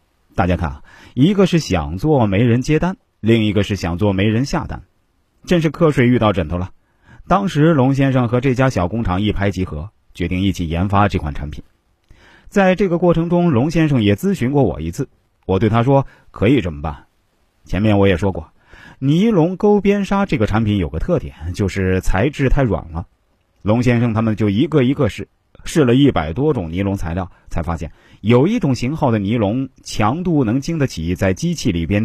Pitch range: 95-140 Hz